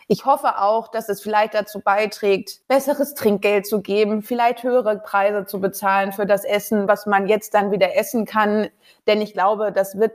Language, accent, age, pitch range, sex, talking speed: German, German, 20-39, 205-245 Hz, female, 190 wpm